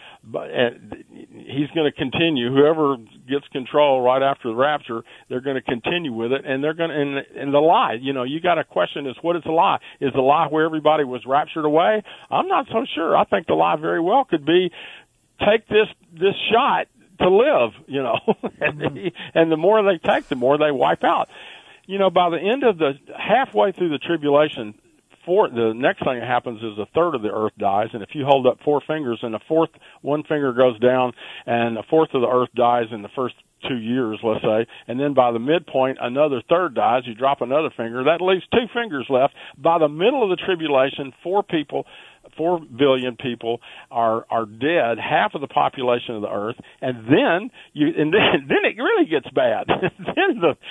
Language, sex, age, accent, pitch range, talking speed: English, male, 50-69, American, 125-175 Hz, 210 wpm